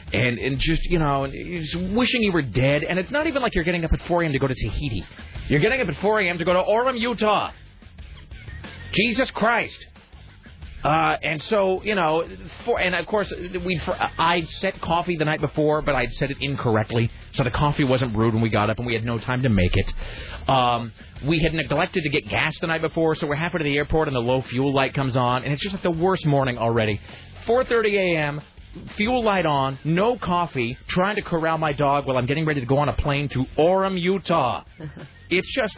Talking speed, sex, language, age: 225 wpm, male, English, 30-49